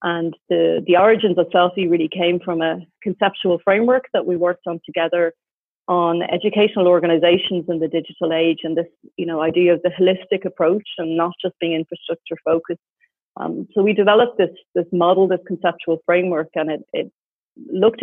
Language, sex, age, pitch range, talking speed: English, female, 30-49, 165-190 Hz, 175 wpm